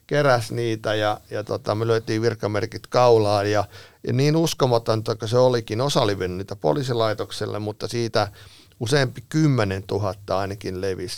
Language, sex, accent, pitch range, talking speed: Finnish, male, native, 100-120 Hz, 145 wpm